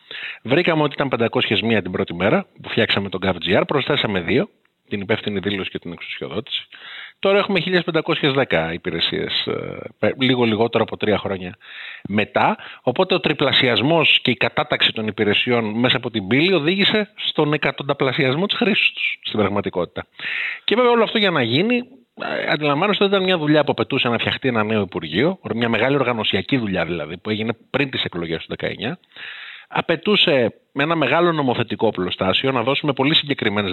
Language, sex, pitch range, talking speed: Greek, male, 110-170 Hz, 160 wpm